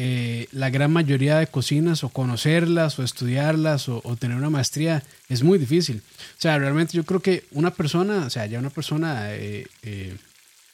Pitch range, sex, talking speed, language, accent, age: 130-165 Hz, male, 185 wpm, Spanish, Colombian, 30-49